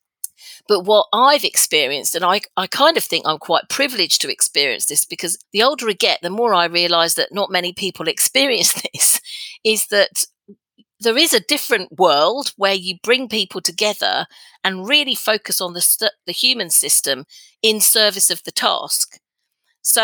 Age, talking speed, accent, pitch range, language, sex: 40-59, 170 wpm, British, 170-225 Hz, English, female